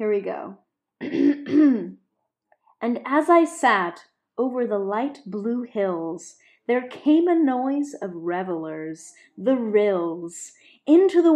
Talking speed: 115 wpm